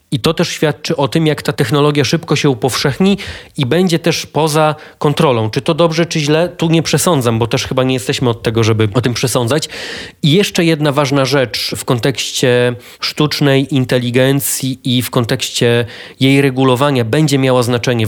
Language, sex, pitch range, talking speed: Polish, male, 130-155 Hz, 175 wpm